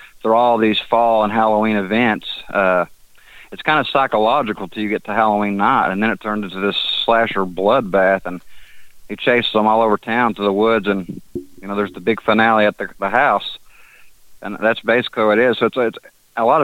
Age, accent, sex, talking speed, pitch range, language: 30-49, American, male, 210 wpm, 105-120 Hz, English